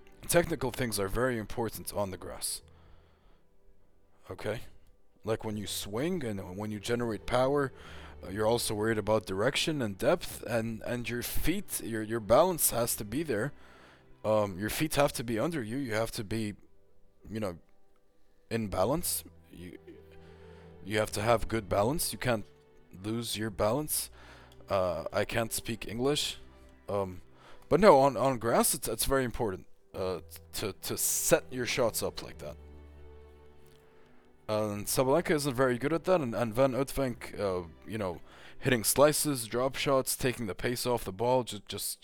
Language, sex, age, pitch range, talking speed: English, male, 20-39, 85-120 Hz, 165 wpm